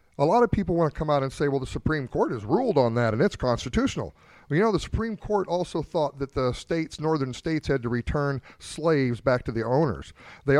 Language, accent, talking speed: English, American, 240 wpm